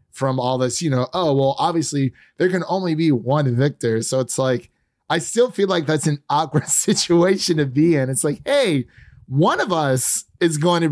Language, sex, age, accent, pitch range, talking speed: English, male, 30-49, American, 120-145 Hz, 205 wpm